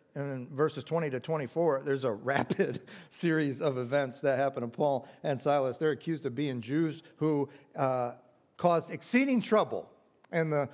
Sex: male